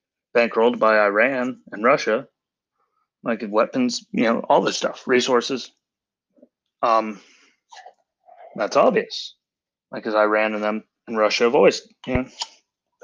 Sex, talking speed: male, 125 wpm